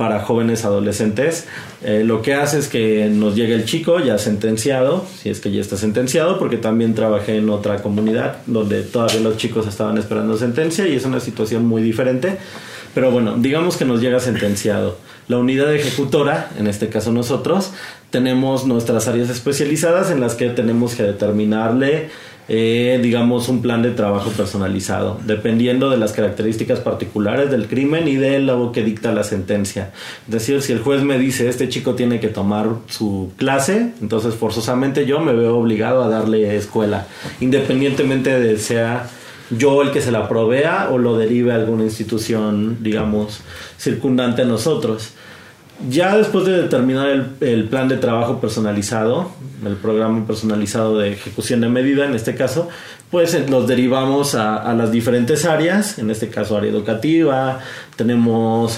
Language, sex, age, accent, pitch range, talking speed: Spanish, male, 30-49, Mexican, 110-130 Hz, 165 wpm